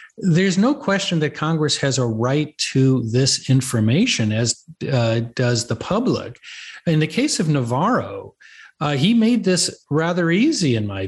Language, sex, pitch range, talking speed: English, male, 125-180 Hz, 155 wpm